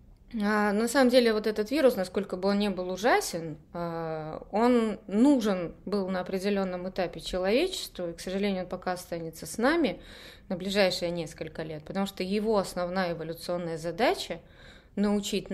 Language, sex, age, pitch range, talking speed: Russian, female, 20-39, 180-235 Hz, 145 wpm